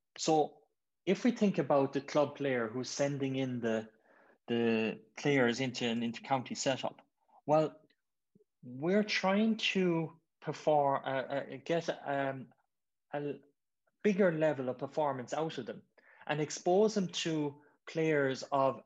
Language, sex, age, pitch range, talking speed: English, male, 20-39, 125-160 Hz, 130 wpm